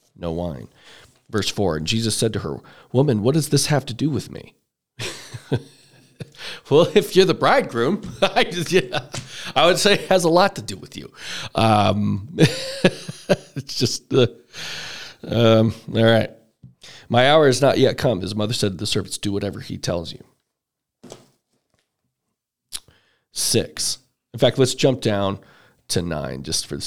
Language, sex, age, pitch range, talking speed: English, male, 40-59, 95-125 Hz, 160 wpm